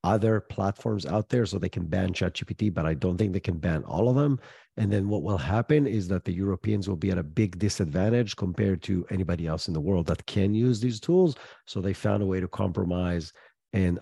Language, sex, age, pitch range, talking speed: English, male, 50-69, 95-115 Hz, 230 wpm